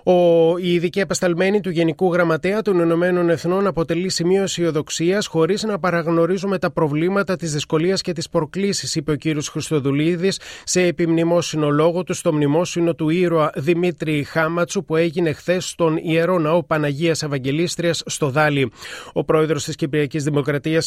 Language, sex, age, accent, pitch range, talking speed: Greek, male, 30-49, native, 150-175 Hz, 145 wpm